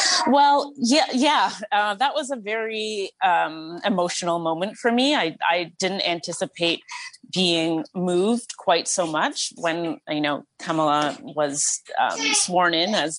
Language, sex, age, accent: English, female, 30-49, American